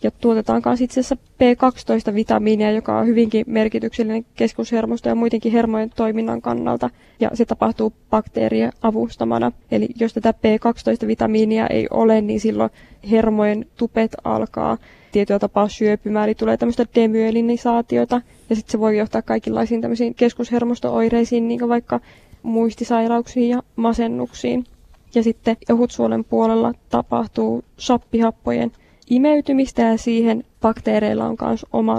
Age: 20-39